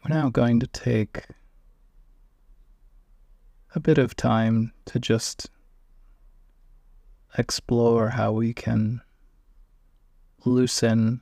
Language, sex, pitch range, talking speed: English, male, 75-115 Hz, 85 wpm